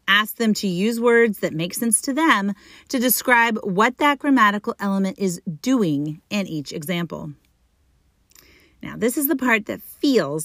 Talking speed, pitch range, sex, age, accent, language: 160 wpm, 170-240 Hz, female, 30-49, American, English